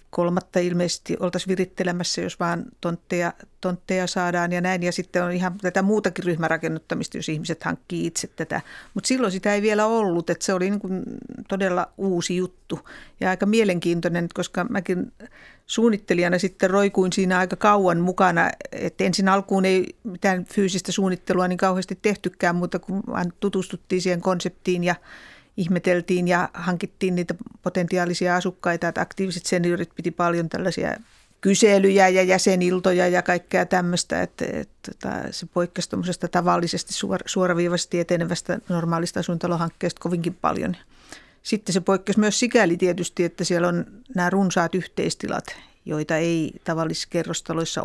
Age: 50-69